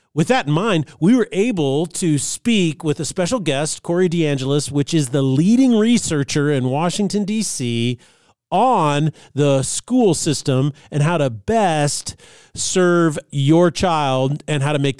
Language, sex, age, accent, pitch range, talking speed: English, male, 40-59, American, 140-190 Hz, 150 wpm